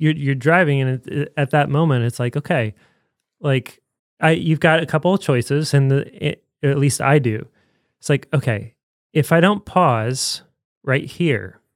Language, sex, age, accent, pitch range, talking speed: English, male, 20-39, American, 120-150 Hz, 165 wpm